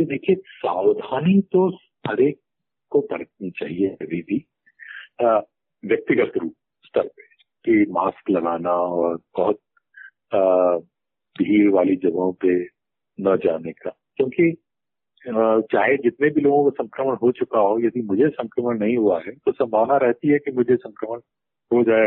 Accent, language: native, Hindi